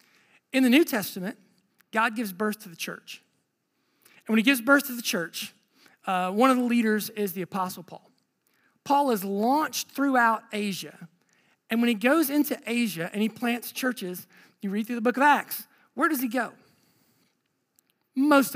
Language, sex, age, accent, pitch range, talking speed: English, male, 40-59, American, 220-285 Hz, 175 wpm